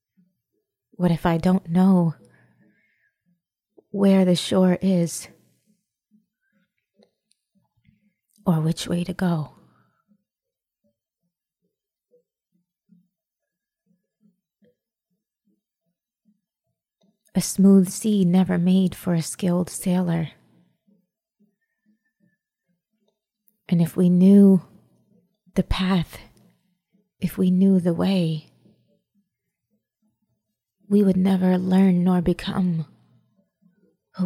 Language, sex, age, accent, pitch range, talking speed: English, female, 30-49, American, 175-205 Hz, 70 wpm